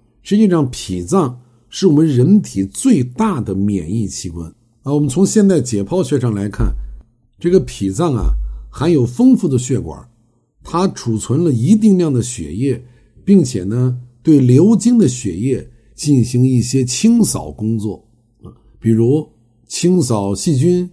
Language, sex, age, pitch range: Chinese, male, 60-79, 110-165 Hz